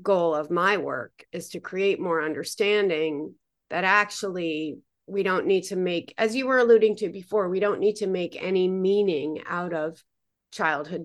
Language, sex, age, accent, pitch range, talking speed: English, female, 40-59, American, 160-195 Hz, 175 wpm